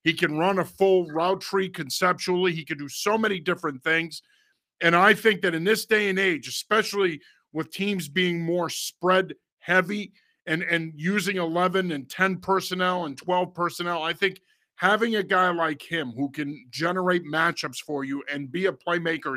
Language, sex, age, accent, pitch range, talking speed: English, male, 50-69, American, 160-195 Hz, 180 wpm